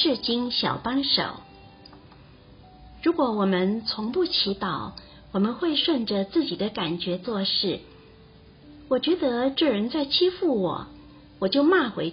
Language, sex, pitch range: Chinese, female, 190-270 Hz